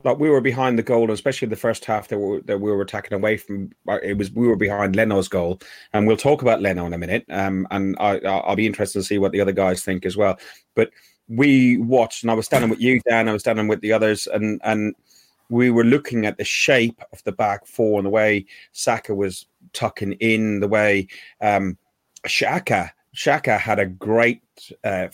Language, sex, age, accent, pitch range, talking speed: English, male, 30-49, British, 100-120 Hz, 215 wpm